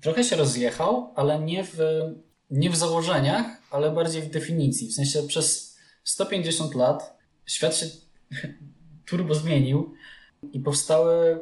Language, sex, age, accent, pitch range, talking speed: English, male, 20-39, Polish, 130-155 Hz, 120 wpm